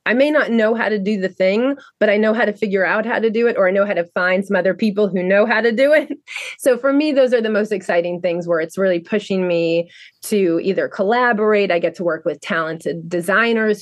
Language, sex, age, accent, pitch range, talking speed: English, female, 30-49, American, 175-215 Hz, 255 wpm